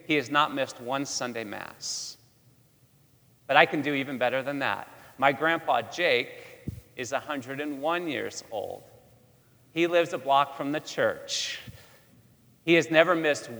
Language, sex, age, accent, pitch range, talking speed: English, male, 40-59, American, 125-160 Hz, 145 wpm